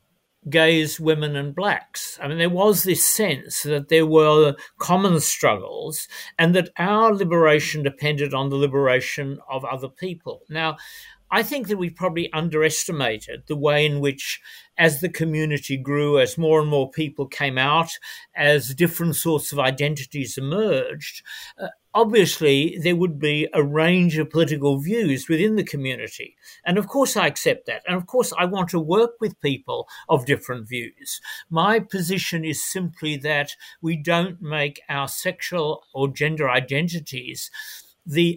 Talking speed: 155 wpm